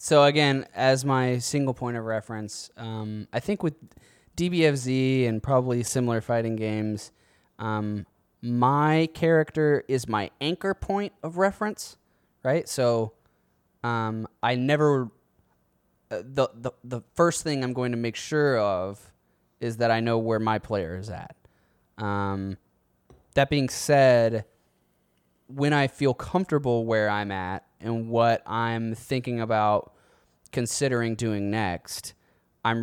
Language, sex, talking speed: English, male, 135 wpm